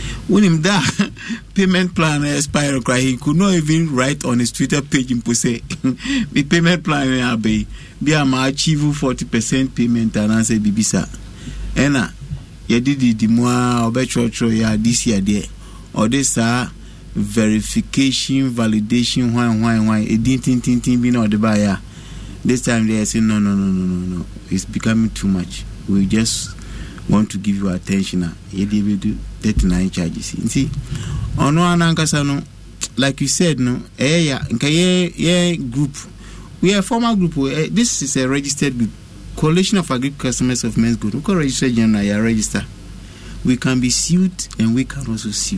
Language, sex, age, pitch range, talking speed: English, male, 50-69, 105-140 Hz, 165 wpm